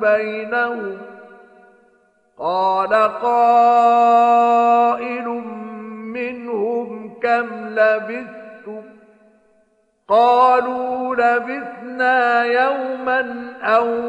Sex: male